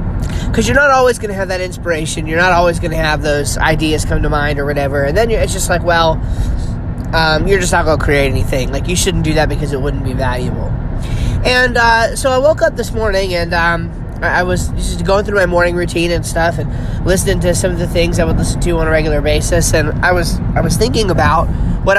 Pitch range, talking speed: 135-195 Hz, 245 wpm